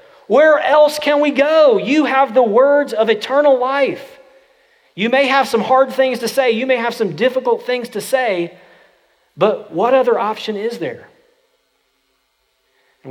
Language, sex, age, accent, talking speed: English, male, 40-59, American, 160 wpm